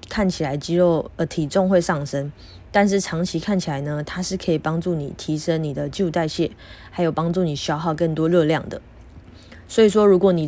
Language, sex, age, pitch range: Chinese, female, 20-39, 150-185 Hz